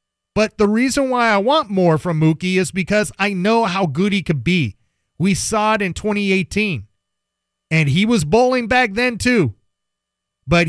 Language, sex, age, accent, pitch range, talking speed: English, male, 30-49, American, 145-220 Hz, 175 wpm